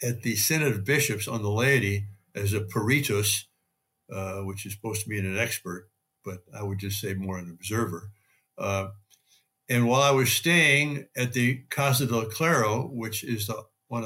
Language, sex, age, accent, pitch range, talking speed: English, male, 60-79, American, 110-140 Hz, 180 wpm